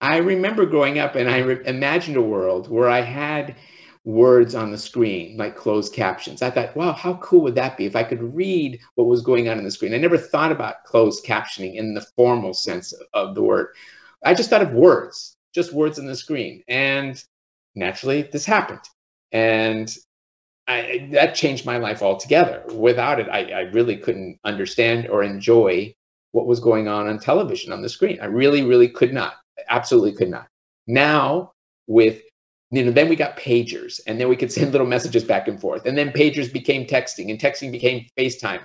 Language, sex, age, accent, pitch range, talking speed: English, male, 50-69, American, 115-150 Hz, 195 wpm